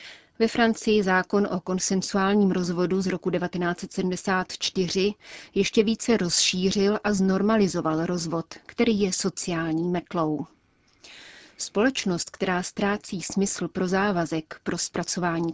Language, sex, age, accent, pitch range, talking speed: Czech, female, 30-49, native, 175-205 Hz, 105 wpm